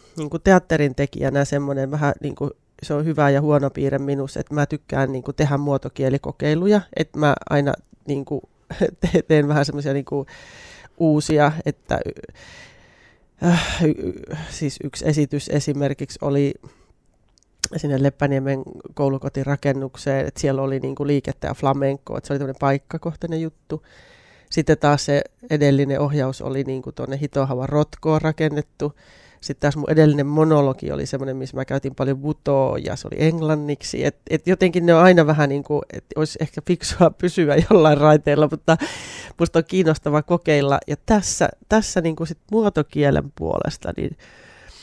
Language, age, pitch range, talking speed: Finnish, 20-39, 140-155 Hz, 140 wpm